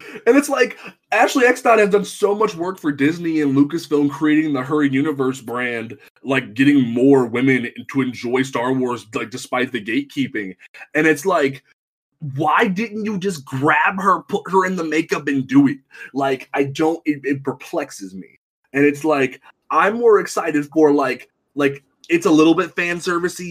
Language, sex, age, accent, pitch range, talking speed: English, male, 20-39, American, 130-160 Hz, 180 wpm